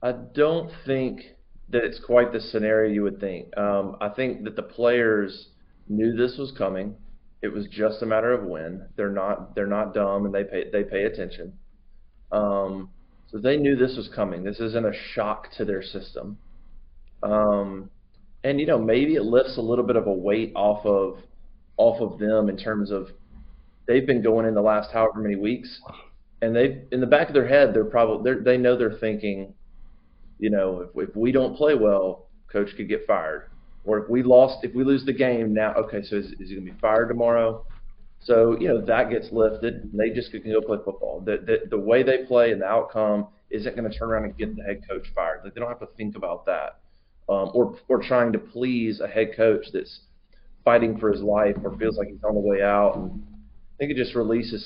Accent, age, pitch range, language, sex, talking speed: American, 30-49, 100-120 Hz, English, male, 220 wpm